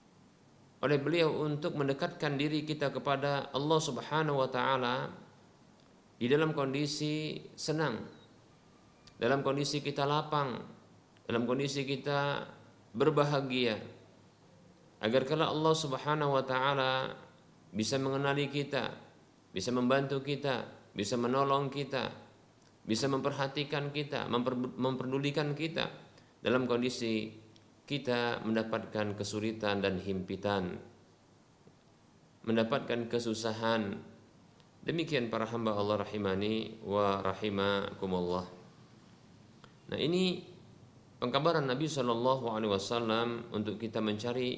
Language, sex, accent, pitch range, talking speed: Indonesian, male, native, 110-140 Hz, 95 wpm